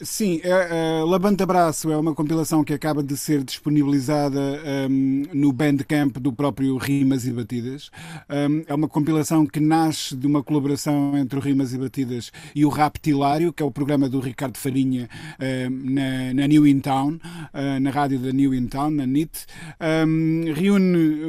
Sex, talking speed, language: male, 170 wpm, Portuguese